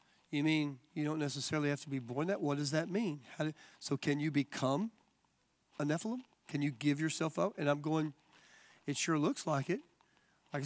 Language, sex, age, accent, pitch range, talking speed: English, male, 40-59, American, 145-175 Hz, 205 wpm